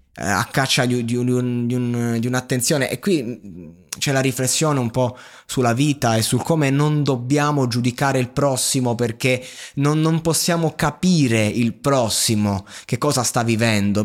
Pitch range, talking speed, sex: 115-155 Hz, 140 wpm, male